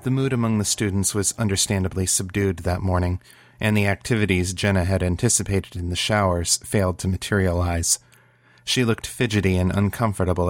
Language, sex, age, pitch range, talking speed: English, male, 30-49, 95-110 Hz, 155 wpm